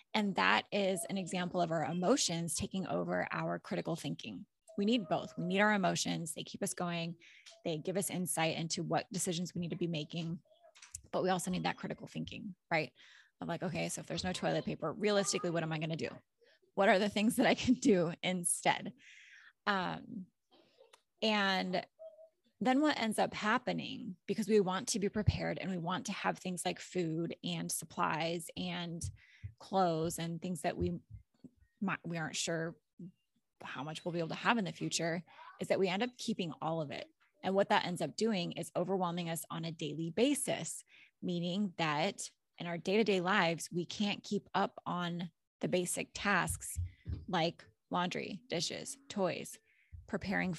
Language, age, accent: English, 20-39, American